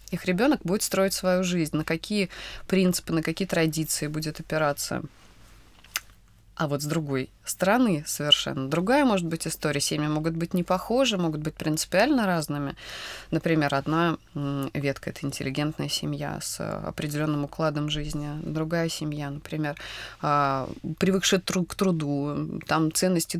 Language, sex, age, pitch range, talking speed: Russian, female, 20-39, 150-185 Hz, 135 wpm